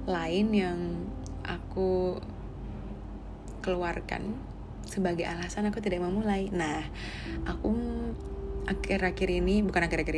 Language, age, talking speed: Indonesian, 20-39, 90 wpm